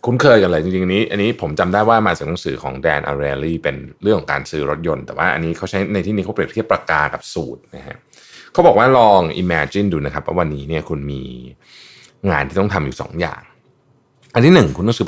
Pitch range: 80-125 Hz